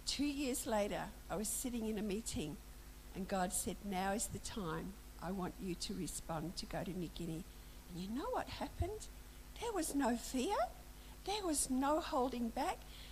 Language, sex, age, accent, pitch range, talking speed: English, female, 50-69, Australian, 205-275 Hz, 185 wpm